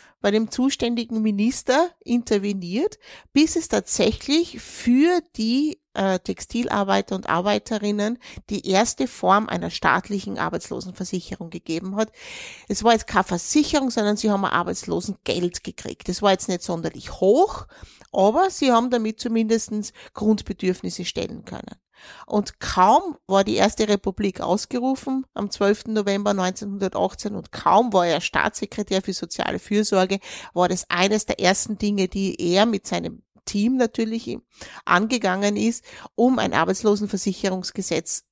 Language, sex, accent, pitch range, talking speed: German, female, Austrian, 190-240 Hz, 130 wpm